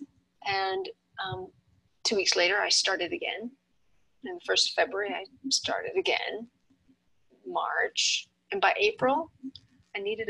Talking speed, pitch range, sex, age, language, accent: 130 wpm, 205-295 Hz, female, 40-59, English, American